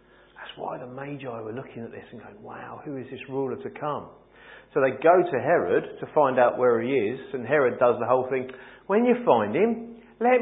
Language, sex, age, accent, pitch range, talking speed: English, male, 40-59, British, 115-185 Hz, 220 wpm